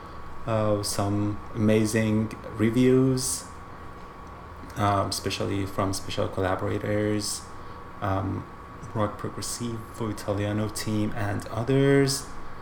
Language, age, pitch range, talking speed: English, 20-39, 95-115 Hz, 80 wpm